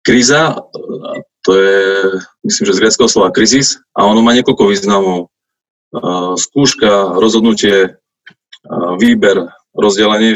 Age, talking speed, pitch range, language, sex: 20-39, 105 wpm, 100-130 Hz, Slovak, male